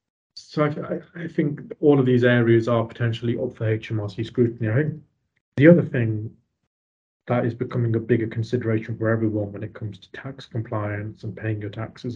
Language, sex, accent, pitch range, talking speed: English, male, British, 110-125 Hz, 175 wpm